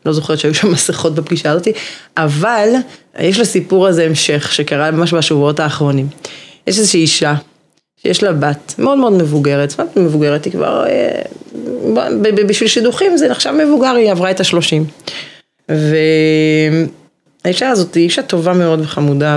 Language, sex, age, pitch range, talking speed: Hebrew, female, 20-39, 155-215 Hz, 140 wpm